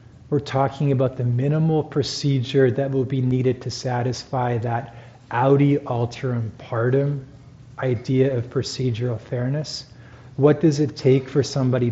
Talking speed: 130 wpm